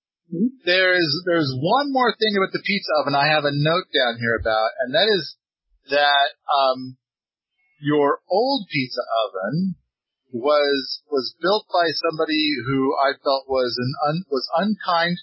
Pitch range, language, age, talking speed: 135-185 Hz, English, 40-59, 150 wpm